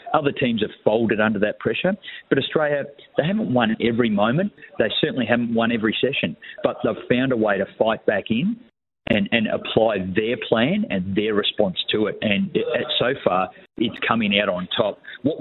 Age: 40-59